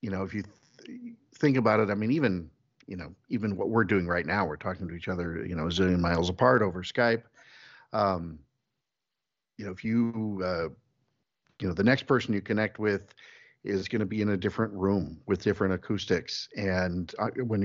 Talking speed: 200 wpm